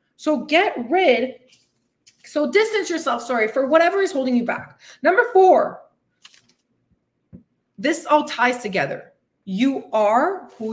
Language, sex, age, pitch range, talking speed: English, female, 20-39, 205-280 Hz, 125 wpm